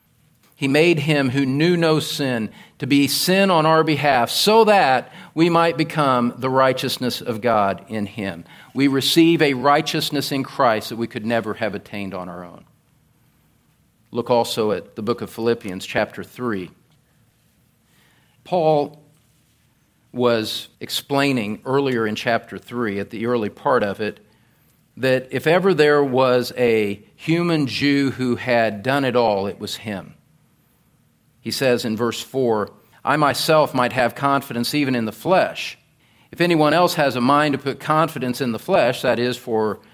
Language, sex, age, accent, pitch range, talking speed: English, male, 50-69, American, 115-155 Hz, 160 wpm